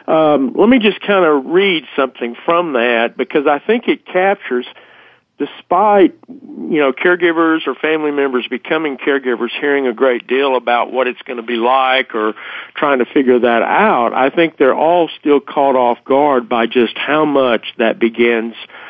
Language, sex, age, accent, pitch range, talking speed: English, male, 50-69, American, 120-160 Hz, 180 wpm